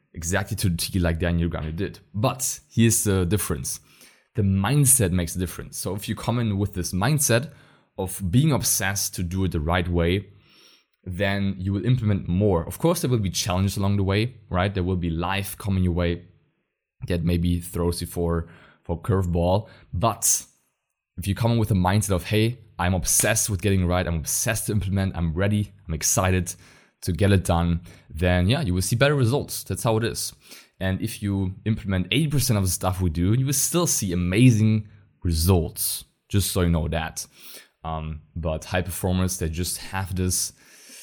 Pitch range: 85-105 Hz